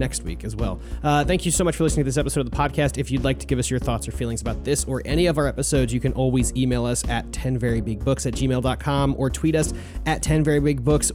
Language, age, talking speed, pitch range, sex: English, 30-49, 260 wpm, 130-170 Hz, male